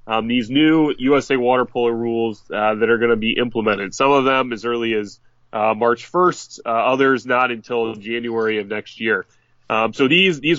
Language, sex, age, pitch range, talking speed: English, male, 30-49, 115-135 Hz, 200 wpm